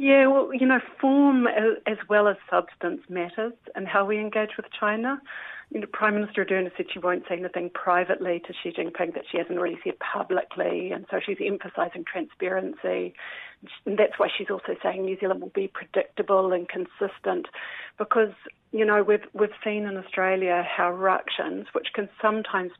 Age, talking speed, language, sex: 40-59, 175 wpm, English, female